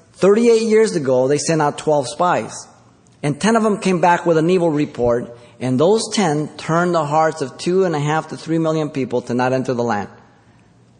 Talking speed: 190 wpm